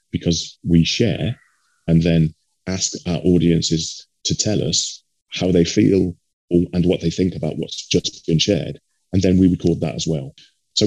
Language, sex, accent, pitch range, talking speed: English, male, British, 85-115 Hz, 170 wpm